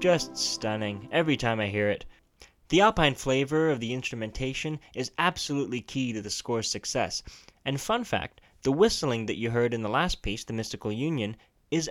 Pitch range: 115-150 Hz